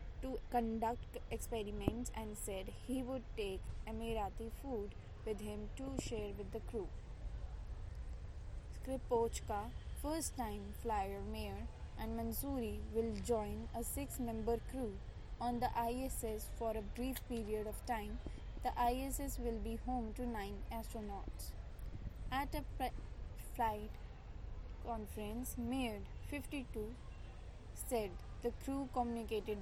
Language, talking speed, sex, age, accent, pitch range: English, 110 wpm, female, 20-39, Indian, 205-250 Hz